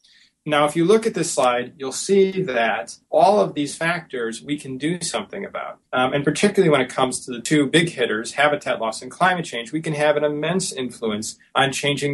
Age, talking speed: 30-49, 215 wpm